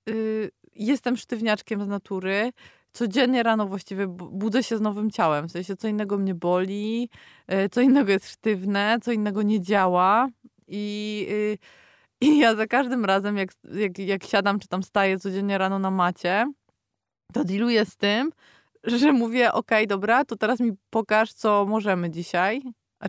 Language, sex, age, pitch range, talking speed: Polish, female, 20-39, 180-215 Hz, 155 wpm